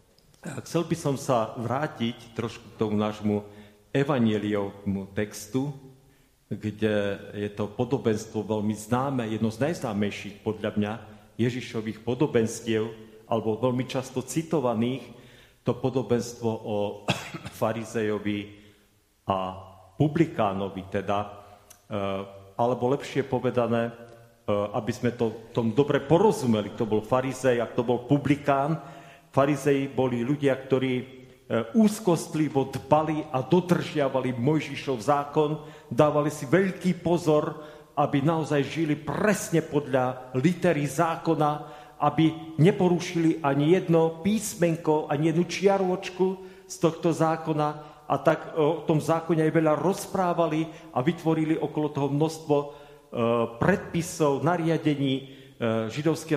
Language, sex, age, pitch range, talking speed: Slovak, male, 40-59, 115-155 Hz, 105 wpm